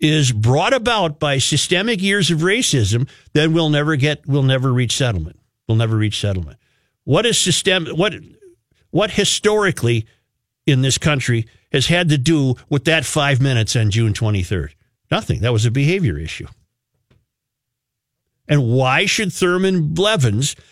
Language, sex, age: English, male, 50-69